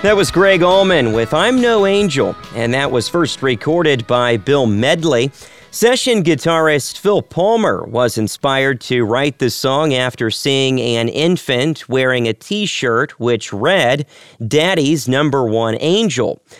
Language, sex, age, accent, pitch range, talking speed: English, male, 40-59, American, 125-170 Hz, 140 wpm